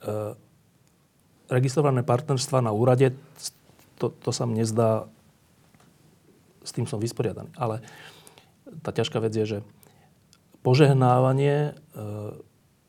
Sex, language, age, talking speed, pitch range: male, Slovak, 40-59, 100 wpm, 115-150 Hz